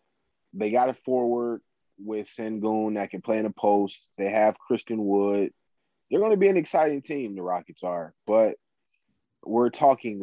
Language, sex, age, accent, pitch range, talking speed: English, male, 30-49, American, 100-120 Hz, 175 wpm